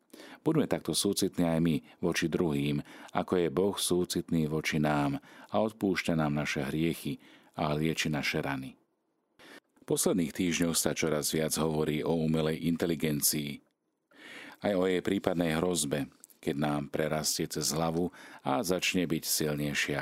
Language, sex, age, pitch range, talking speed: Slovak, male, 40-59, 75-90 Hz, 140 wpm